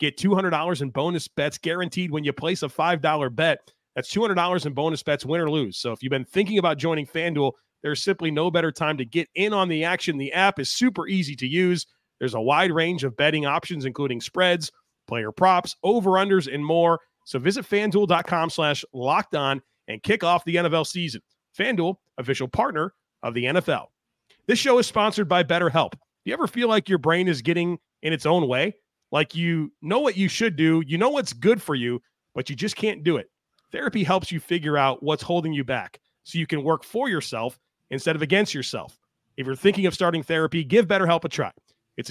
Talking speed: 210 wpm